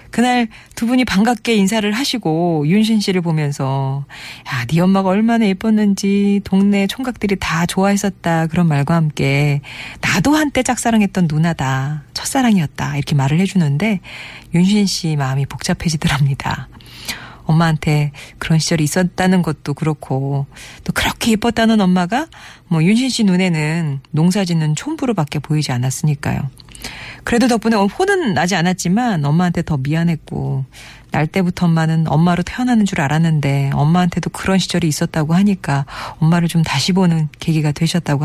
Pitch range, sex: 150-200 Hz, female